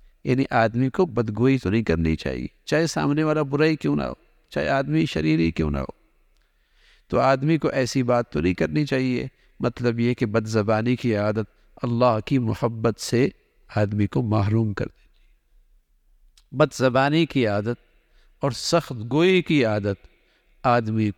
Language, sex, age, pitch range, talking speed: English, male, 50-69, 110-140 Hz, 155 wpm